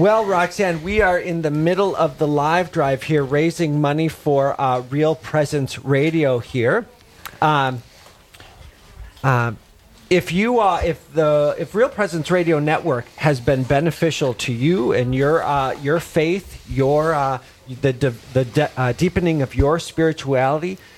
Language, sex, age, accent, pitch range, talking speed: English, male, 40-59, American, 125-155 Hz, 150 wpm